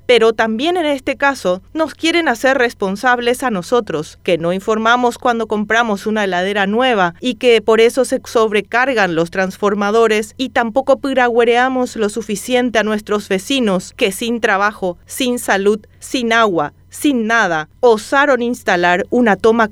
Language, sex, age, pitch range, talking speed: Spanish, female, 30-49, 190-245 Hz, 145 wpm